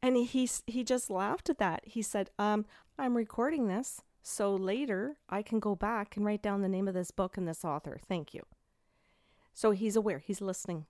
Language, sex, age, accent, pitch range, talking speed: English, female, 40-59, American, 165-200 Hz, 205 wpm